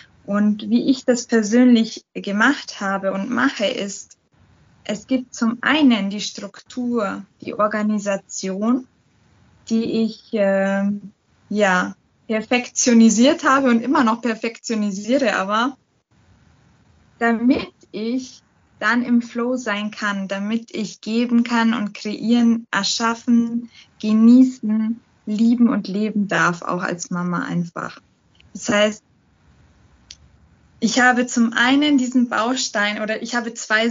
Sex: female